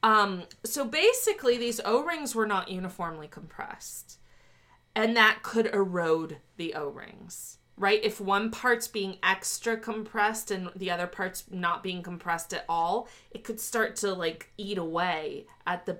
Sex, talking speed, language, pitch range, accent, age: female, 150 wpm, English, 185-265 Hz, American, 20-39